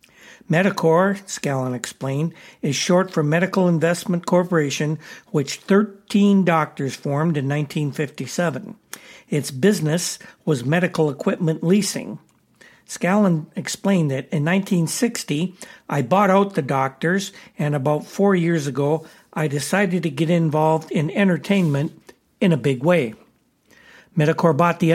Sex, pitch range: male, 150-185 Hz